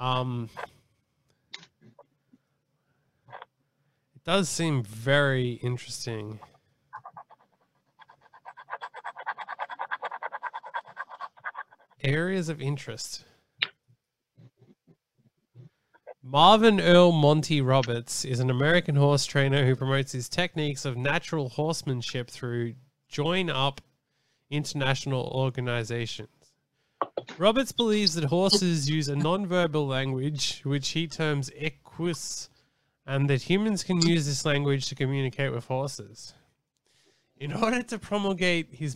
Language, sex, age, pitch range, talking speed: English, male, 20-39, 130-155 Hz, 90 wpm